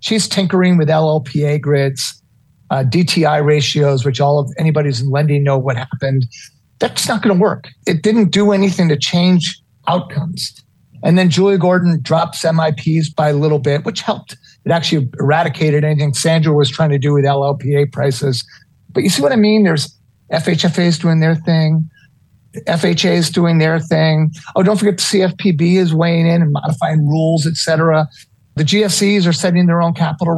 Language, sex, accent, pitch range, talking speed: English, male, American, 145-175 Hz, 175 wpm